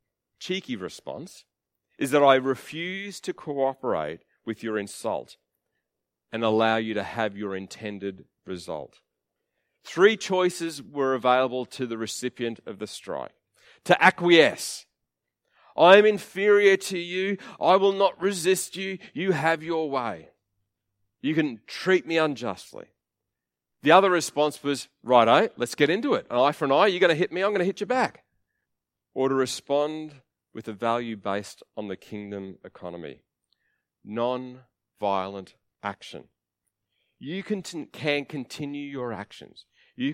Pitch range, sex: 105-155 Hz, male